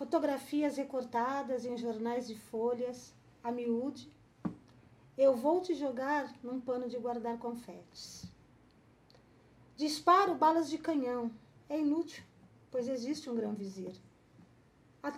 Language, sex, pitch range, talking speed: Portuguese, female, 235-315 Hz, 110 wpm